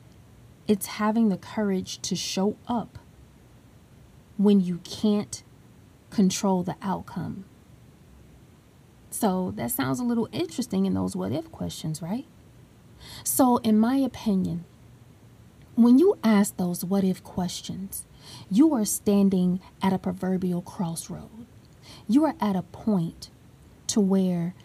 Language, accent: English, American